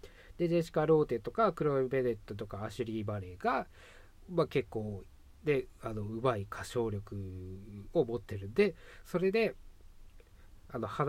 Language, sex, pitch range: Japanese, male, 100-155 Hz